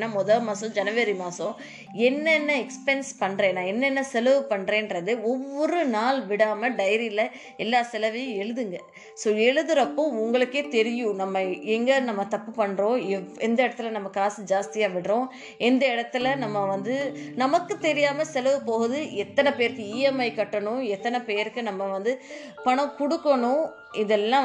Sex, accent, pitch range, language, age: female, native, 195-250 Hz, Tamil, 20-39